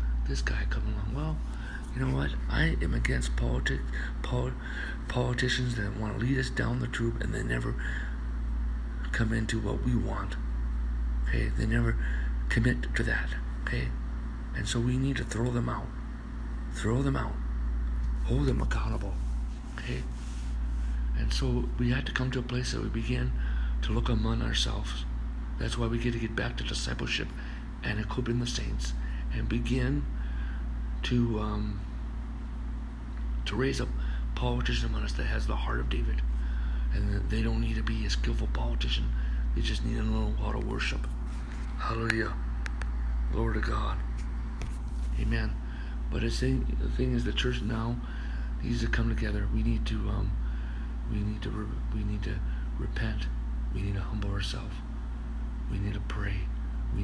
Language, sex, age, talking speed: English, male, 60-79, 160 wpm